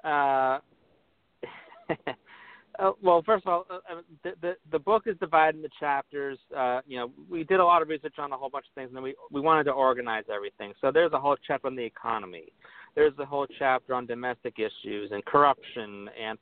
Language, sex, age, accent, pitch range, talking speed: English, male, 40-59, American, 125-155 Hz, 205 wpm